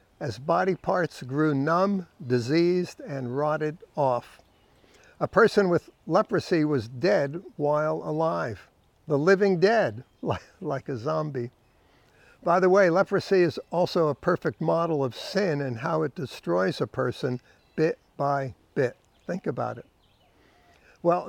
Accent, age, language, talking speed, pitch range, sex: American, 60-79, English, 130 wpm, 145-185 Hz, male